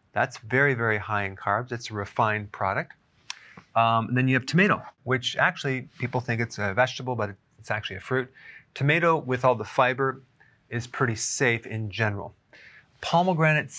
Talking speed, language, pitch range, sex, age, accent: 170 wpm, English, 110-130 Hz, male, 30-49, American